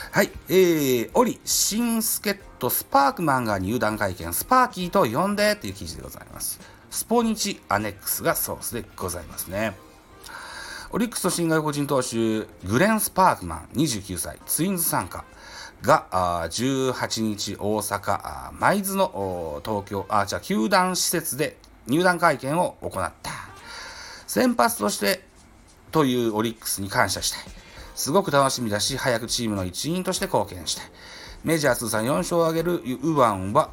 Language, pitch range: Japanese, 105-175 Hz